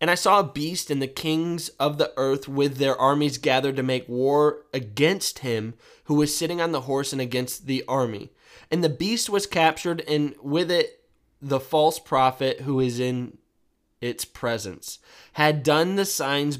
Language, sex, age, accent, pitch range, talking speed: English, male, 20-39, American, 130-160 Hz, 180 wpm